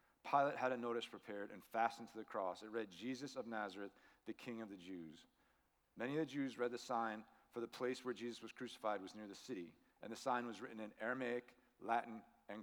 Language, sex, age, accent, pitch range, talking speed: English, male, 40-59, American, 105-135 Hz, 225 wpm